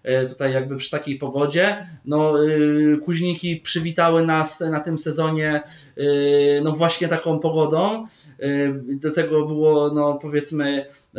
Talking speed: 115 wpm